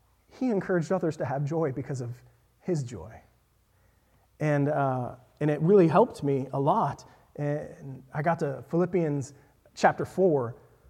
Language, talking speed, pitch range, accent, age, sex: English, 145 wpm, 125-195 Hz, American, 30-49, male